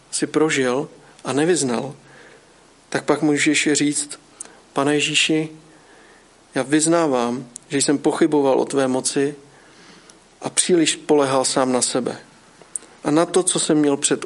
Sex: male